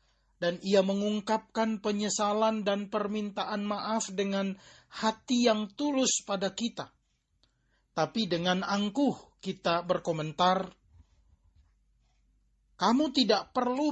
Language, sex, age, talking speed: Indonesian, male, 40-59, 90 wpm